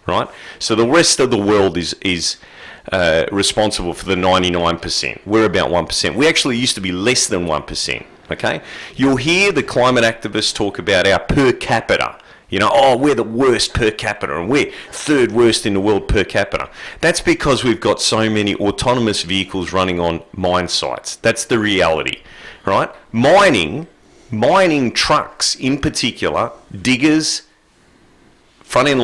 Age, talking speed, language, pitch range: 40-59, 155 wpm, English, 95-125 Hz